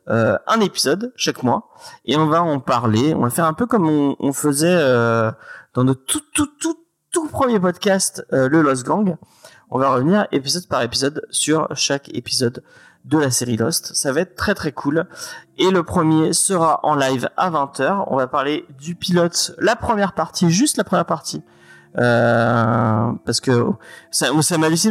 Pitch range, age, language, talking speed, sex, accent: 120-175 Hz, 30-49, French, 185 wpm, male, French